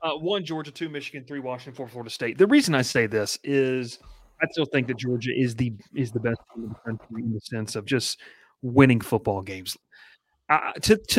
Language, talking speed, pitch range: English, 200 wpm, 115-145 Hz